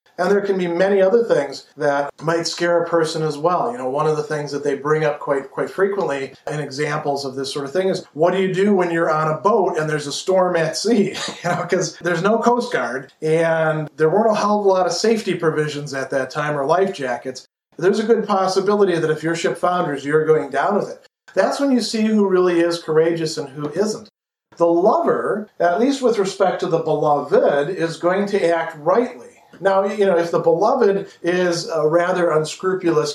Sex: male